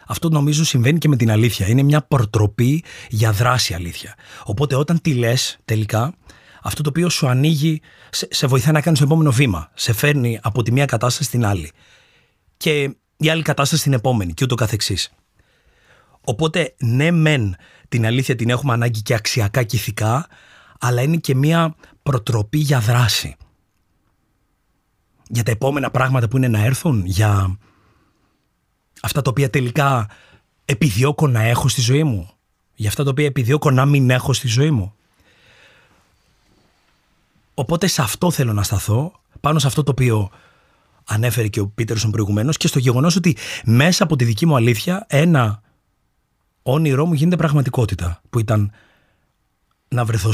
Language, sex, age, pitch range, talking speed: Greek, male, 30-49, 110-145 Hz, 155 wpm